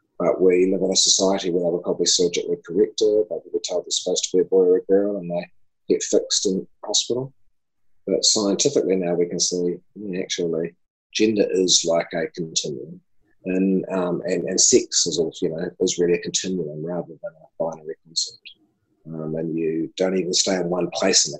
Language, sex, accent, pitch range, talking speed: English, male, Australian, 95-120 Hz, 200 wpm